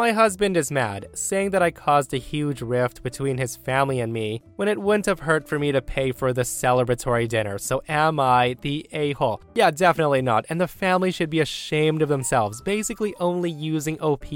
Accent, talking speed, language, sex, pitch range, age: American, 205 wpm, English, male, 125-170 Hz, 20-39